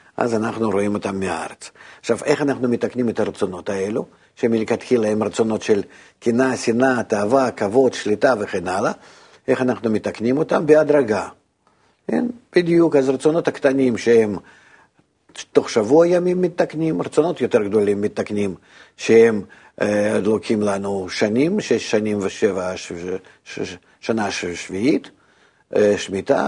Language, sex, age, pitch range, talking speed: Hebrew, male, 50-69, 105-130 Hz, 125 wpm